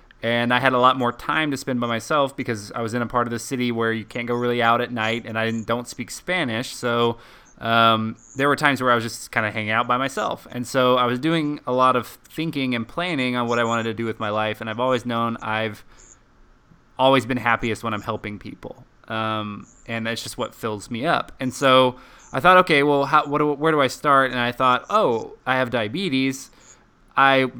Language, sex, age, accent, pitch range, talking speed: English, male, 20-39, American, 115-135 Hz, 230 wpm